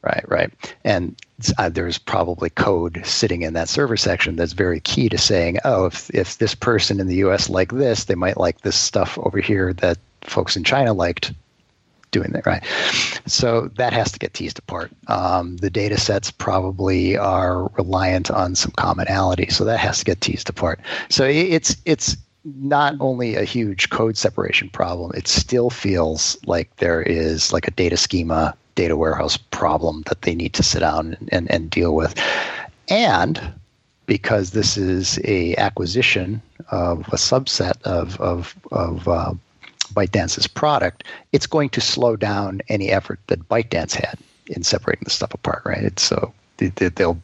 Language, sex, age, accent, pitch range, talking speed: English, male, 50-69, American, 90-115 Hz, 170 wpm